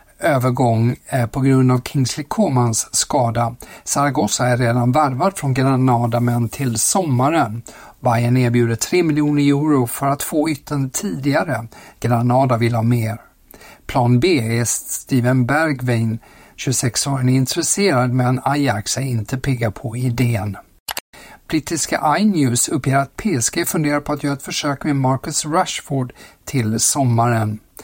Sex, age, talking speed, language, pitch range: male, 60-79, 135 wpm, Swedish, 120-150 Hz